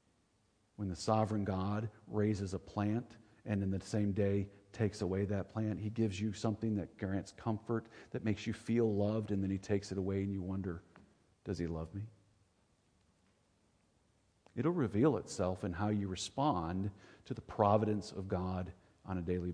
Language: English